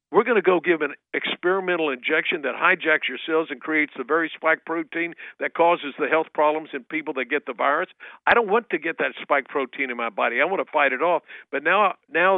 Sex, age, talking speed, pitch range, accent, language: male, 50-69, 240 wpm, 140-175 Hz, American, English